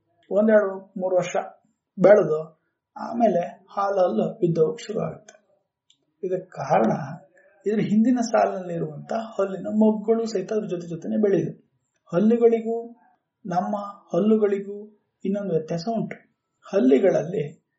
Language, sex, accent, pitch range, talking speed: Kannada, male, native, 160-210 Hz, 85 wpm